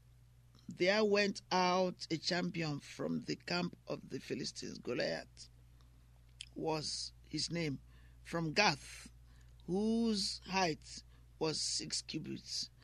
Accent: Nigerian